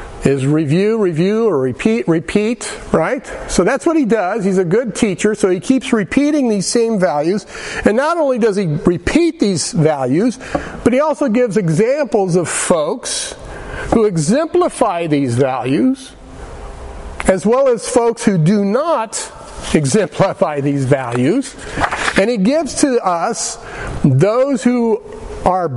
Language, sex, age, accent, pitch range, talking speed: English, male, 50-69, American, 170-255 Hz, 140 wpm